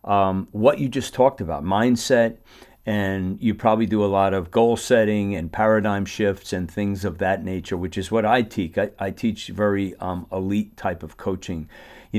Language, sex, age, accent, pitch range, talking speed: English, male, 50-69, American, 95-115 Hz, 190 wpm